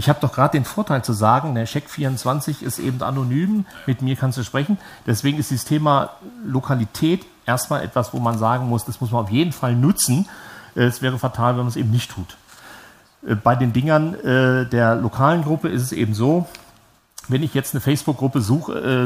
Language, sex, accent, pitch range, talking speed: German, male, German, 115-140 Hz, 190 wpm